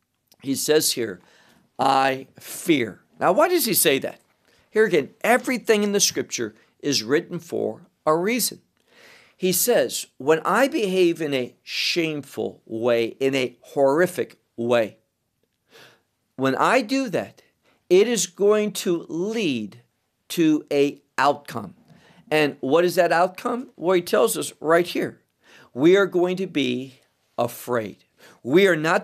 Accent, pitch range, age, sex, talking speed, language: American, 135-200 Hz, 50-69, male, 140 wpm, English